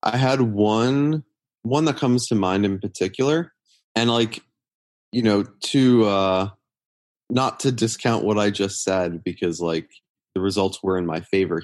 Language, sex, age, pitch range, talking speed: English, male, 20-39, 90-110 Hz, 160 wpm